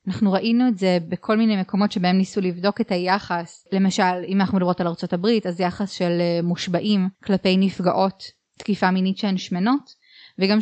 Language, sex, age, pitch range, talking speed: Hebrew, female, 20-39, 180-215 Hz, 165 wpm